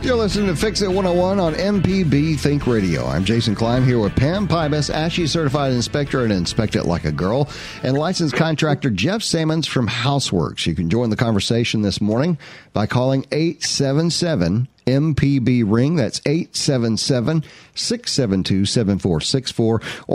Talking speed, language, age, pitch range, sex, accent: 140 wpm, English, 50-69, 115-150 Hz, male, American